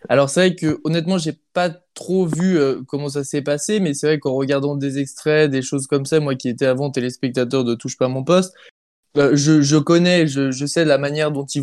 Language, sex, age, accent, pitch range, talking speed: French, male, 20-39, French, 135-160 Hz, 245 wpm